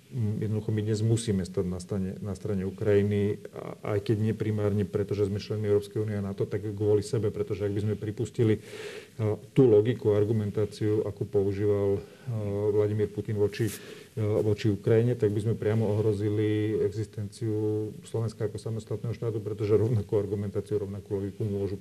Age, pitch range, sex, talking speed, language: 40-59, 100-110 Hz, male, 150 wpm, Slovak